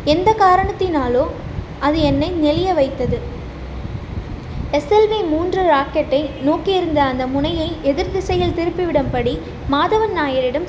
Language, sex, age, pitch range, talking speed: Tamil, female, 20-39, 285-345 Hz, 95 wpm